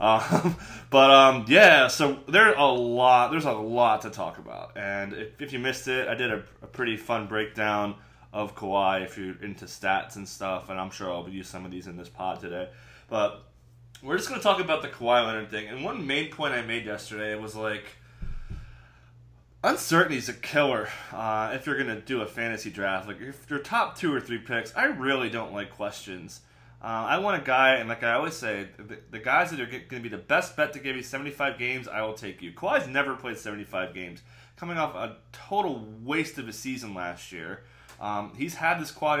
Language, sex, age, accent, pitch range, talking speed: English, male, 20-39, American, 105-135 Hz, 220 wpm